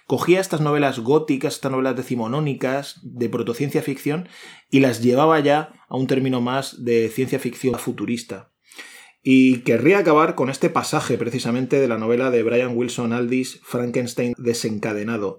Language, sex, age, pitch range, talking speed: Spanish, male, 20-39, 125-165 Hz, 150 wpm